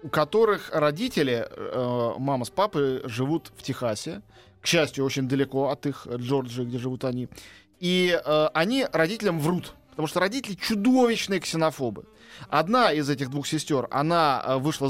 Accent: native